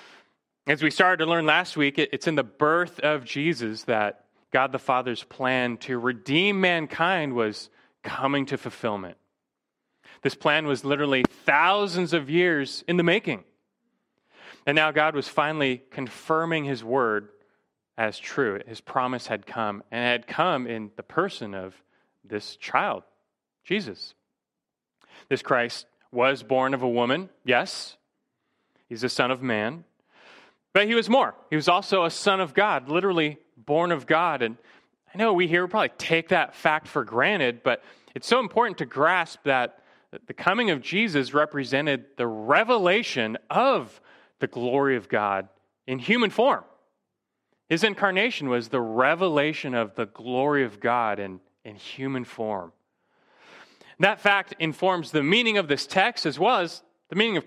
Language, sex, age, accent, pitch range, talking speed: English, male, 30-49, American, 120-170 Hz, 155 wpm